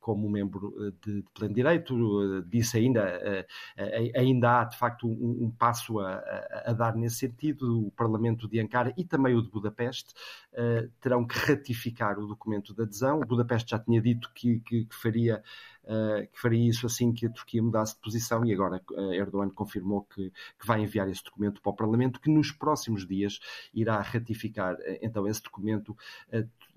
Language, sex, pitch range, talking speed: Portuguese, male, 105-125 Hz, 165 wpm